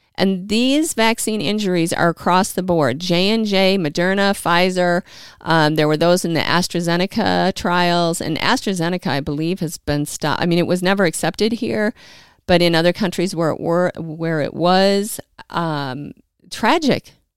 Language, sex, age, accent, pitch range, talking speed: English, female, 50-69, American, 160-195 Hz, 150 wpm